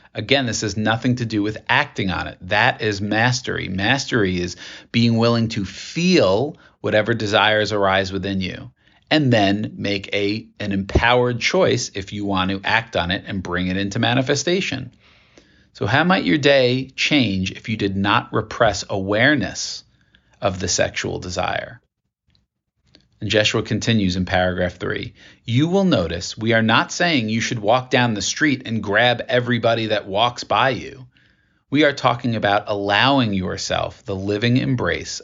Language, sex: English, male